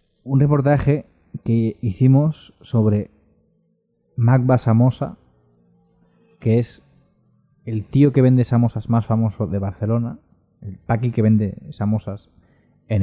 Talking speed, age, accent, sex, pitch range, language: 110 wpm, 20-39, Spanish, male, 105-130 Hz, Spanish